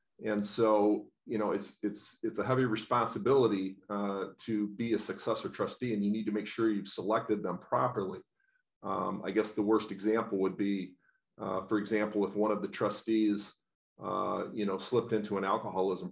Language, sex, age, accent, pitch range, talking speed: English, male, 40-59, American, 100-110 Hz, 180 wpm